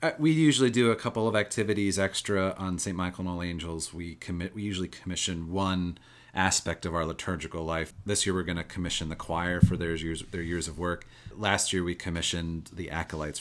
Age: 30-49